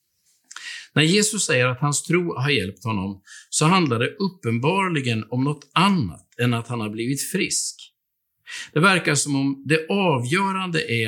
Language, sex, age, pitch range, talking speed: Swedish, male, 50-69, 120-165 Hz, 155 wpm